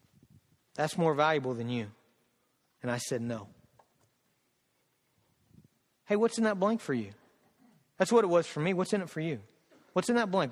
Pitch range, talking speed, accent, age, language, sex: 130-185 Hz, 175 wpm, American, 40-59, English, male